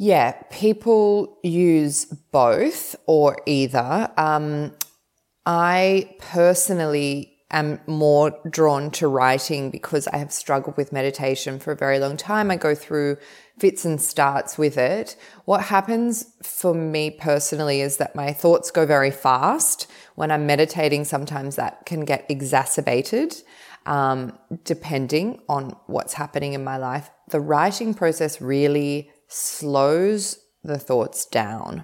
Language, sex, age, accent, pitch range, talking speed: English, female, 20-39, Australian, 145-170 Hz, 130 wpm